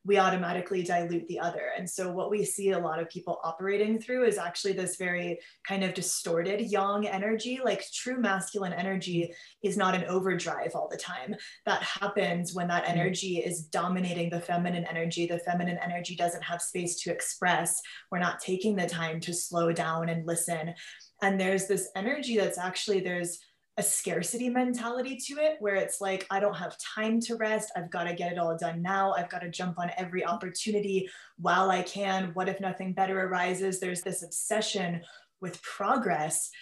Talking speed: 185 wpm